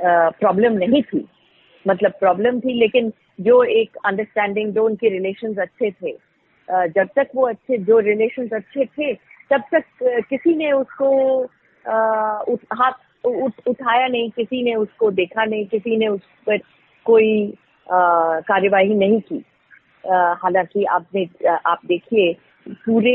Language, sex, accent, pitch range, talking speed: Hindi, female, native, 195-260 Hz, 145 wpm